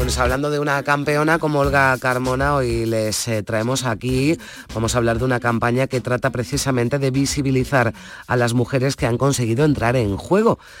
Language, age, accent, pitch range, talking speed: Spanish, 30-49, Spanish, 110-140 Hz, 170 wpm